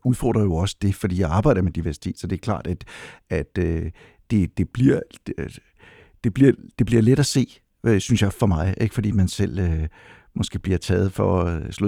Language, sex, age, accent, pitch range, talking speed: Danish, male, 60-79, native, 90-110 Hz, 205 wpm